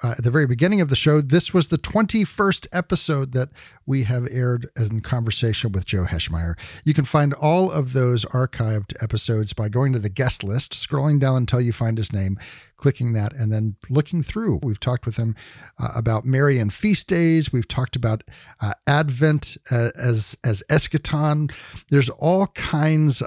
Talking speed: 185 wpm